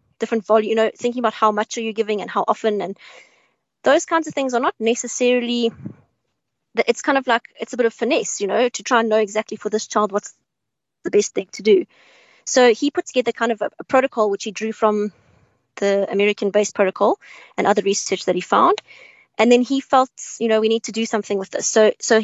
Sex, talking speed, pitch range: female, 230 wpm, 215-245 Hz